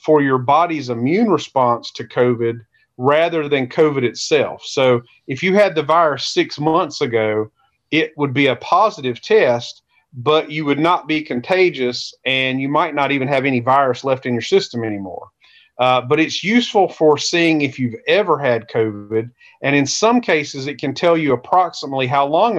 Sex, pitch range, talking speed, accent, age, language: male, 125-160 Hz, 180 wpm, American, 40-59, English